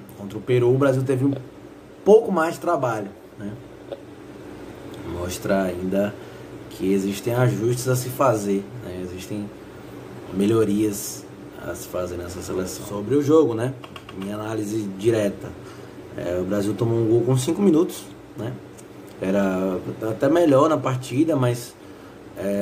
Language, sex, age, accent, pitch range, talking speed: Portuguese, male, 20-39, Brazilian, 100-145 Hz, 140 wpm